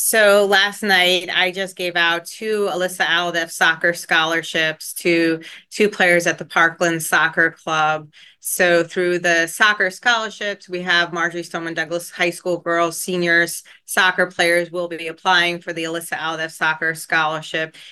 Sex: female